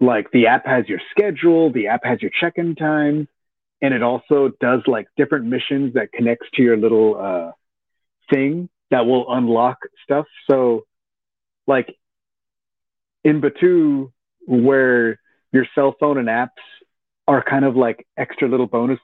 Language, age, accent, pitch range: English, 30-49, American, 115-140 Hz